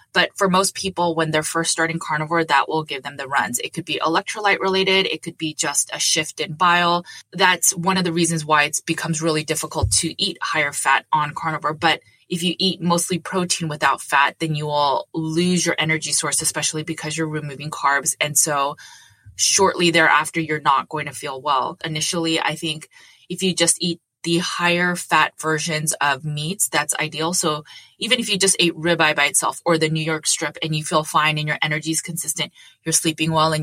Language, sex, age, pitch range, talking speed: English, female, 20-39, 150-170 Hz, 205 wpm